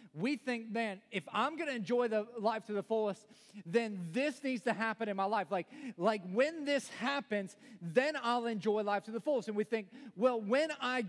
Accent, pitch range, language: American, 220-270 Hz, English